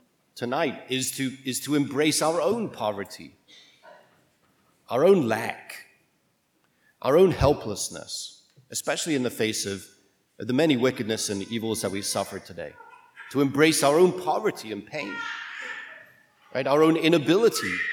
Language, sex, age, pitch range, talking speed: English, male, 40-59, 115-160 Hz, 135 wpm